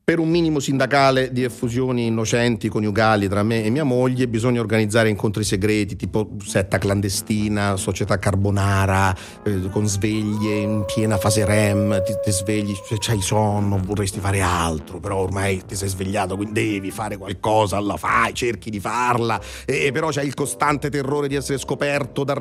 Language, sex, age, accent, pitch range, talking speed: Italian, male, 40-59, native, 105-165 Hz, 170 wpm